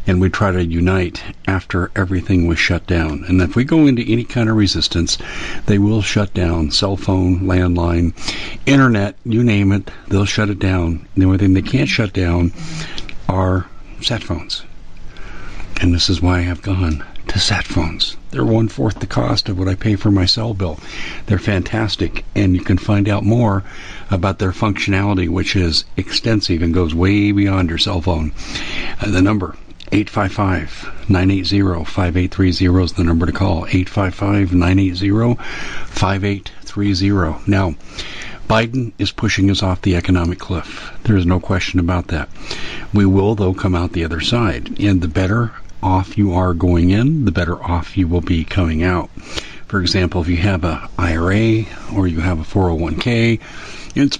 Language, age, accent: English, 60-79, American